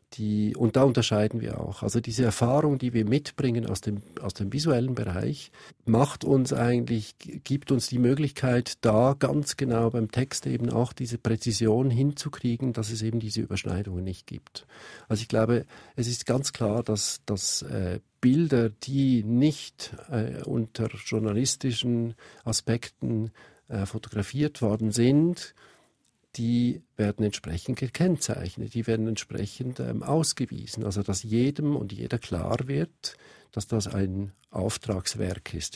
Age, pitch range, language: 50-69, 105-130 Hz, German